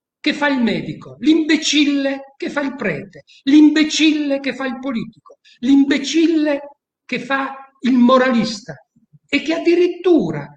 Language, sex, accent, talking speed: Italian, male, native, 125 wpm